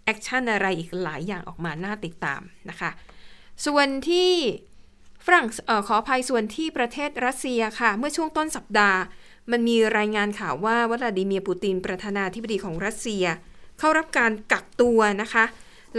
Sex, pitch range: female, 205-250 Hz